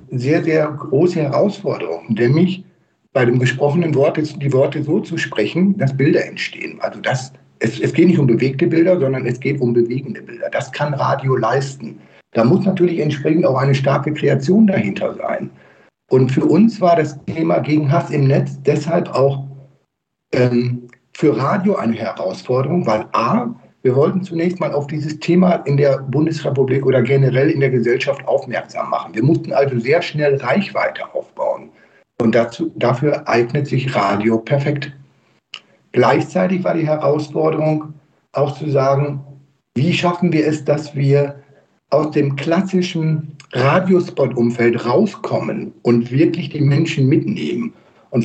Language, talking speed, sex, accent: German, 150 wpm, male, German